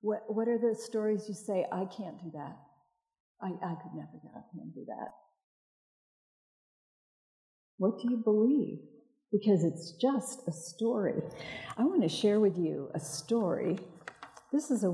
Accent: American